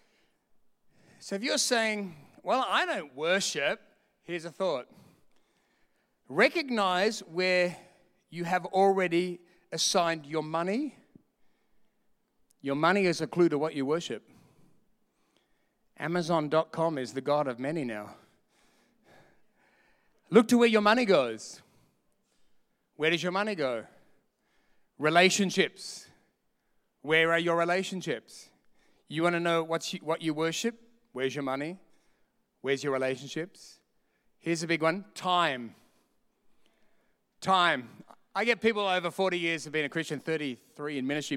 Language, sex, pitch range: English, male, 150-195 Hz